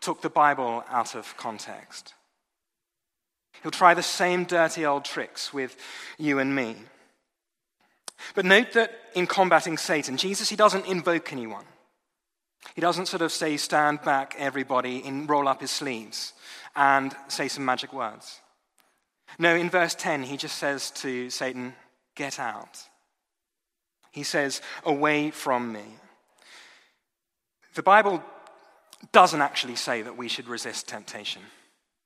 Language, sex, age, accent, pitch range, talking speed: English, male, 30-49, British, 130-165 Hz, 135 wpm